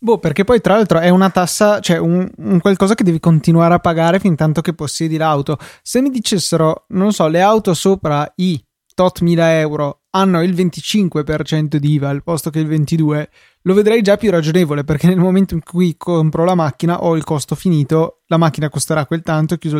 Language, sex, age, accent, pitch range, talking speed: Italian, male, 20-39, native, 150-175 Hz, 205 wpm